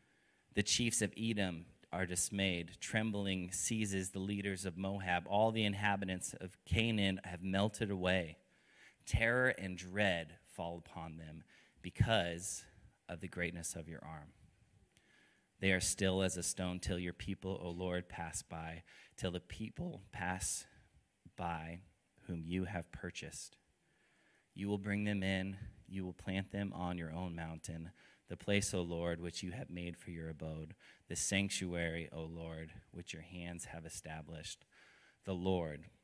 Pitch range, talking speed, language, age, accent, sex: 85-100 Hz, 150 wpm, English, 30-49, American, male